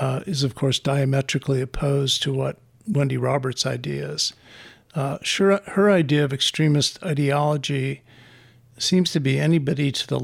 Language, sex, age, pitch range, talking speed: English, male, 50-69, 135-150 Hz, 140 wpm